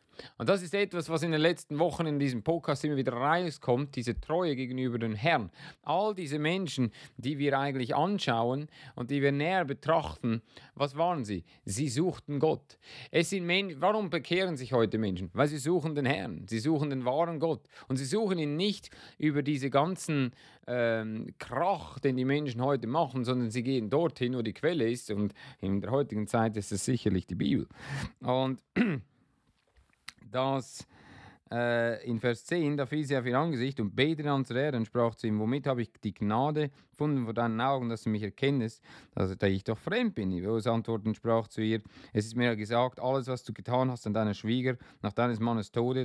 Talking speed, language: 195 wpm, German